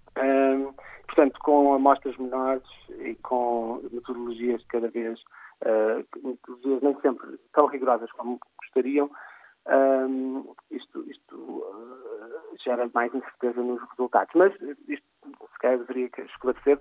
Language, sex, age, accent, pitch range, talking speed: Portuguese, male, 50-69, Portuguese, 120-155 Hz, 110 wpm